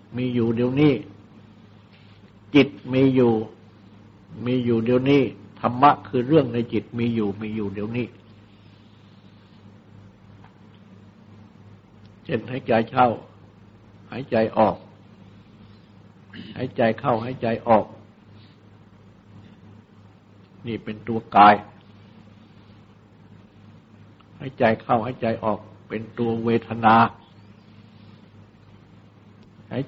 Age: 60-79